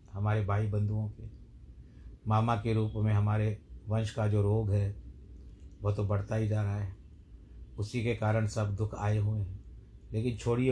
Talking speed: 175 wpm